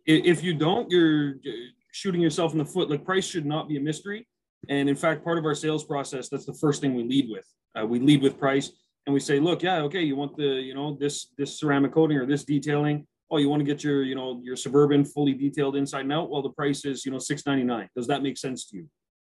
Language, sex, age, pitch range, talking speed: English, male, 30-49, 135-155 Hz, 255 wpm